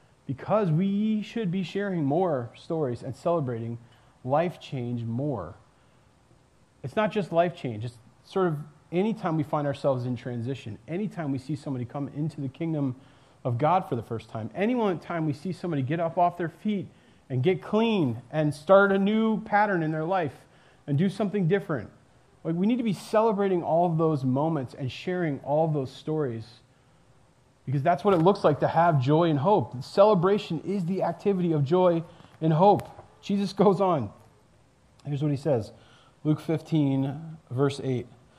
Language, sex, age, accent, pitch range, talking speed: English, male, 30-49, American, 130-185 Hz, 170 wpm